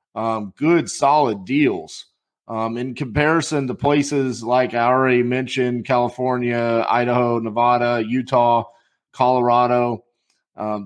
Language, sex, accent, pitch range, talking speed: English, male, American, 115-135 Hz, 105 wpm